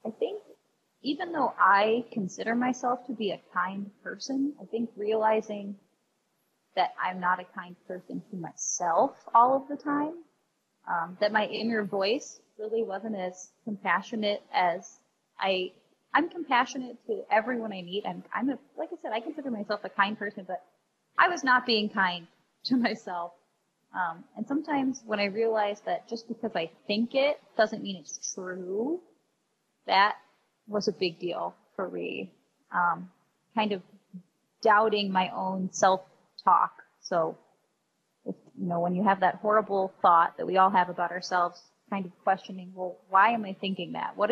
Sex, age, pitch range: female, 20-39, 185-230 Hz